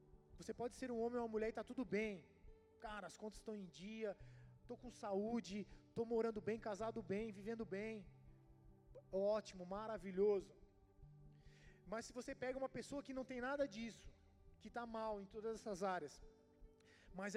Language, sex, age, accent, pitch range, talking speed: Portuguese, male, 20-39, Brazilian, 150-230 Hz, 170 wpm